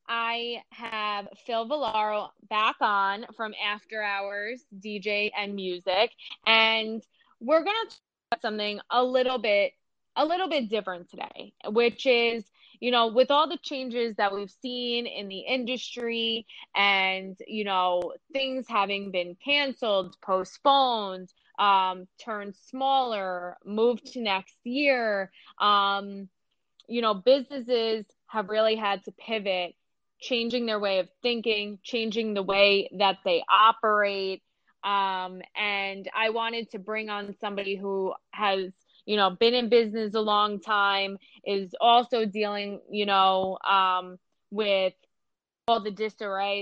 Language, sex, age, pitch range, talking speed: English, female, 20-39, 195-240 Hz, 130 wpm